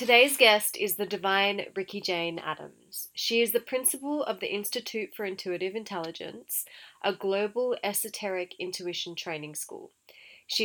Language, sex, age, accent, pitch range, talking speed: English, female, 30-49, Australian, 180-215 Hz, 140 wpm